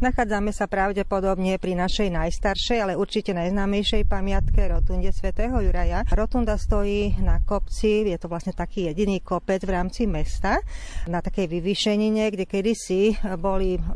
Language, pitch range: Slovak, 175-205 Hz